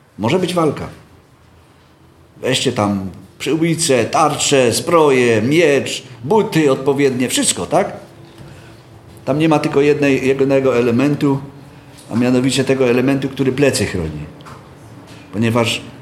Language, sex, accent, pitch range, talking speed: Polish, male, native, 115-150 Hz, 105 wpm